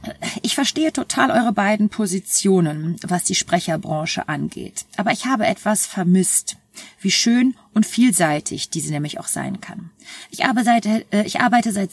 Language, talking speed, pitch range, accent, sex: German, 155 wpm, 185-230 Hz, German, female